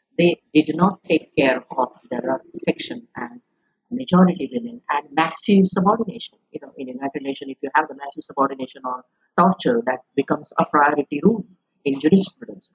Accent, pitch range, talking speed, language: Indian, 140-205 Hz, 160 wpm, English